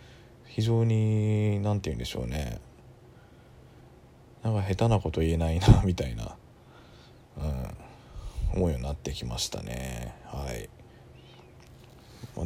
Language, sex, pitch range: Japanese, male, 85-120 Hz